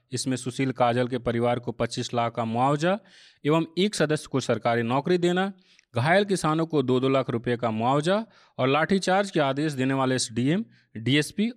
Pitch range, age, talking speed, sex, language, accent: 120-170 Hz, 30-49, 180 wpm, male, Hindi, native